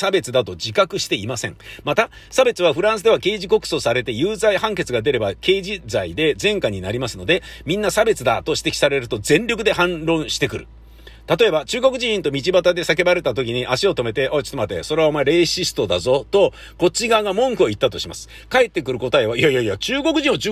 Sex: male